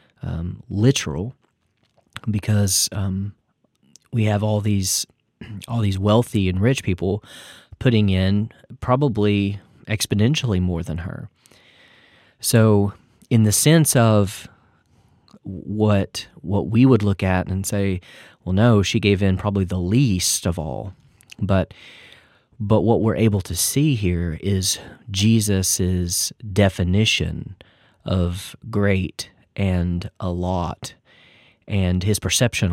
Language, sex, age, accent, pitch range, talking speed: English, male, 30-49, American, 95-115 Hz, 115 wpm